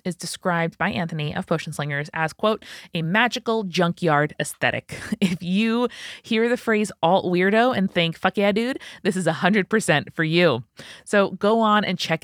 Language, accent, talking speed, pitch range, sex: English, American, 165 wpm, 155-195 Hz, female